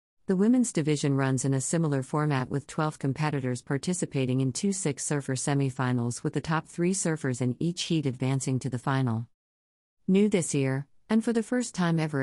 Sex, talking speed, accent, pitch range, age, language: female, 180 wpm, American, 130-160 Hz, 50-69, English